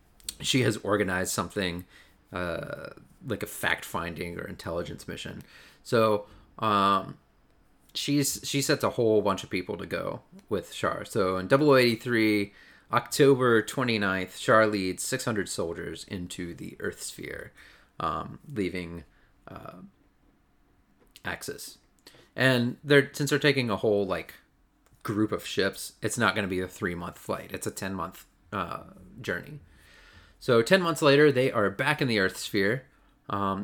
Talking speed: 140 wpm